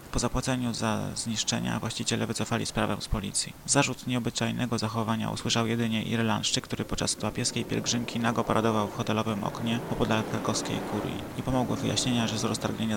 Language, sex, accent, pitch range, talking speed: Polish, male, native, 110-125 Hz, 155 wpm